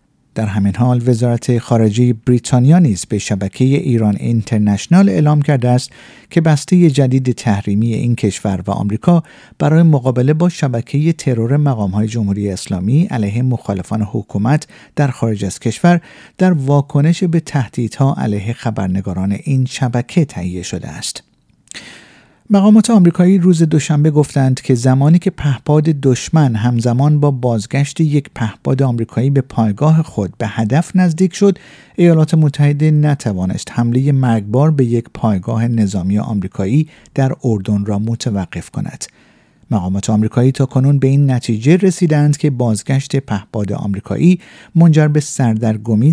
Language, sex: Persian, male